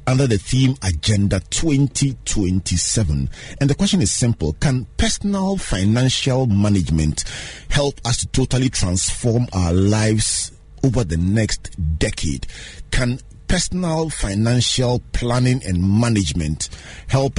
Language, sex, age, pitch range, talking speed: English, male, 40-59, 90-130 Hz, 110 wpm